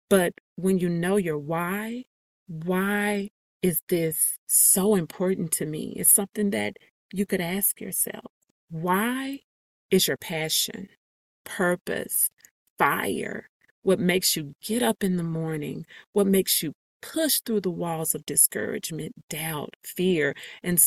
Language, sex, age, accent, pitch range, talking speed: English, female, 30-49, American, 175-225 Hz, 130 wpm